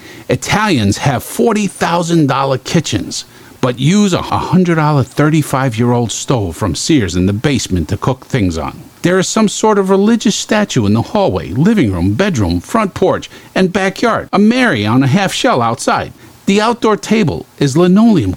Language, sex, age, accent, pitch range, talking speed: English, male, 50-69, American, 120-185 Hz, 155 wpm